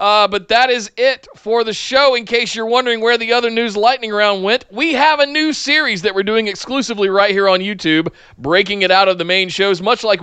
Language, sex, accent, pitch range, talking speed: English, male, American, 155-200 Hz, 240 wpm